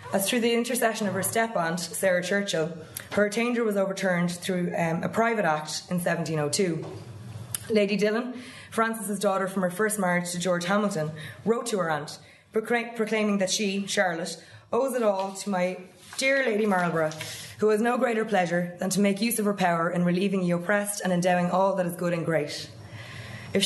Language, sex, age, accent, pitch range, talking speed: English, female, 20-39, Irish, 160-205 Hz, 185 wpm